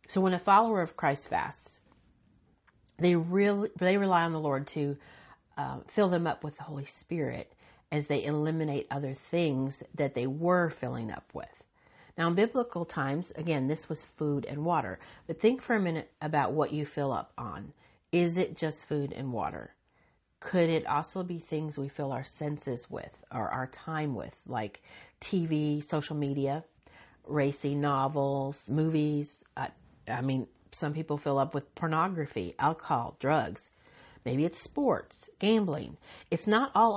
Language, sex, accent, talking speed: English, female, American, 160 wpm